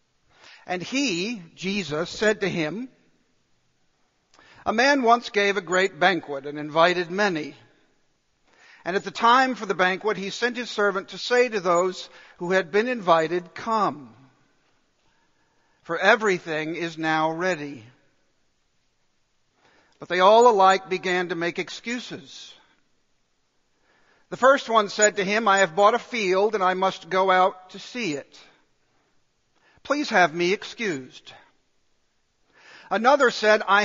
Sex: male